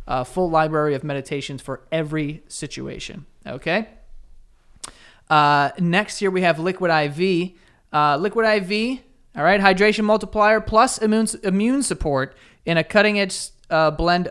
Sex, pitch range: male, 135-165 Hz